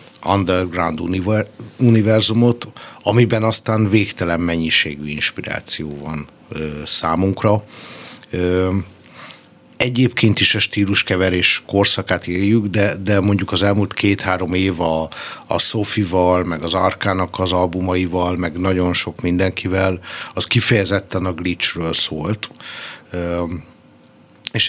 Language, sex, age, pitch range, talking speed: Hungarian, male, 60-79, 85-100 Hz, 105 wpm